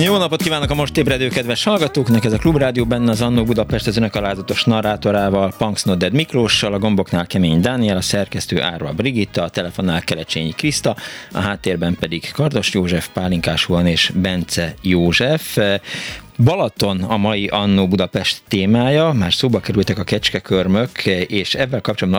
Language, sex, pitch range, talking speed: Hungarian, male, 95-120 Hz, 150 wpm